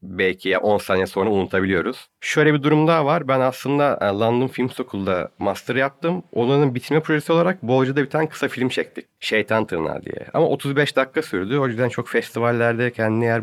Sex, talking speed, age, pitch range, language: male, 185 wpm, 40-59, 95-140 Hz, Turkish